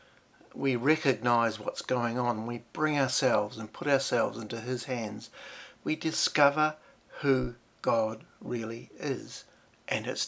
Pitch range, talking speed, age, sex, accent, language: 120-145 Hz, 130 wpm, 60-79, male, Australian, English